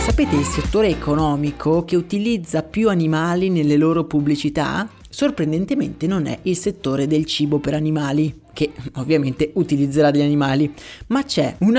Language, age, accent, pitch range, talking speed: Italian, 30-49, native, 155-220 Hz, 145 wpm